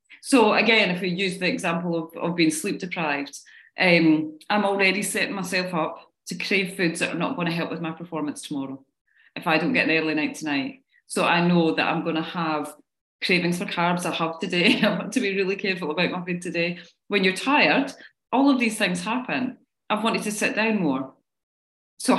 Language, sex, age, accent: English, female, 30-49, British